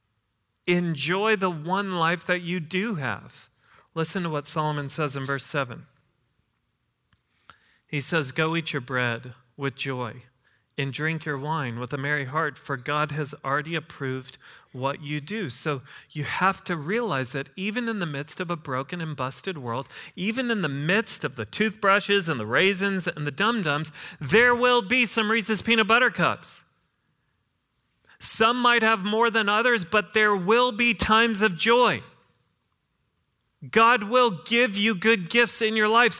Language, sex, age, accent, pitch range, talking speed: English, male, 40-59, American, 150-220 Hz, 165 wpm